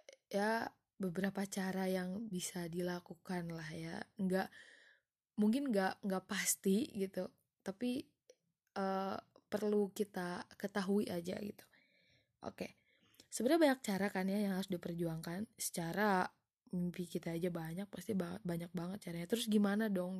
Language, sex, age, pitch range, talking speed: Indonesian, female, 20-39, 175-210 Hz, 130 wpm